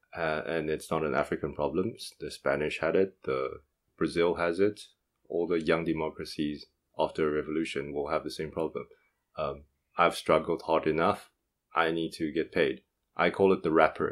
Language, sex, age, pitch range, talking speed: English, male, 20-39, 75-90 Hz, 180 wpm